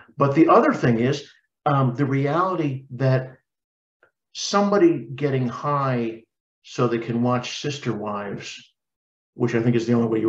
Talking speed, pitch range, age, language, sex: 150 wpm, 115-135 Hz, 50-69, English, male